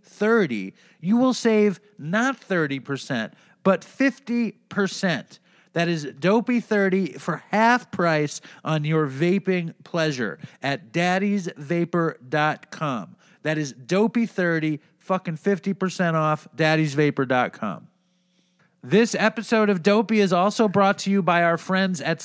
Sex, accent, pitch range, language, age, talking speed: male, American, 170-210 Hz, English, 40-59, 115 wpm